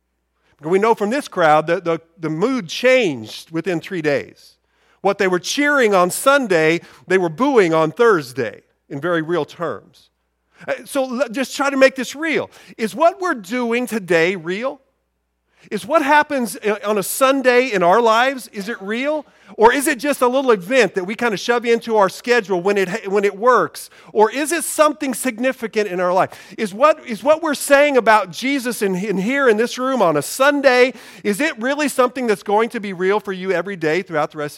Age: 50-69